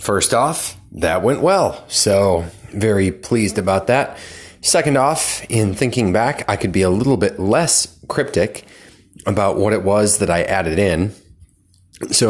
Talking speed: 155 wpm